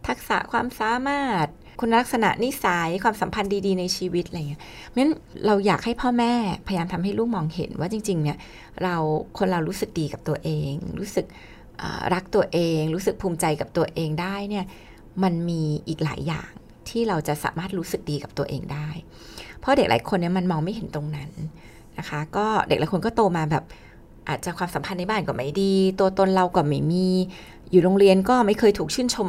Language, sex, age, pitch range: Thai, female, 20-39, 165-220 Hz